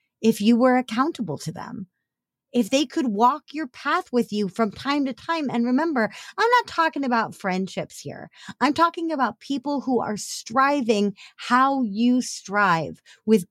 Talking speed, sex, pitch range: 165 wpm, female, 175-255 Hz